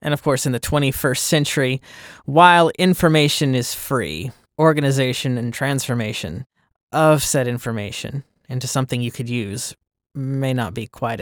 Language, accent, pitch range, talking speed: English, American, 130-185 Hz, 140 wpm